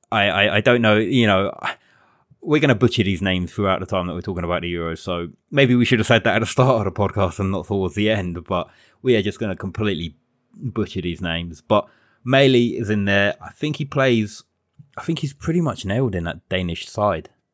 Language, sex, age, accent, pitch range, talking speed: English, male, 20-39, British, 95-115 Hz, 235 wpm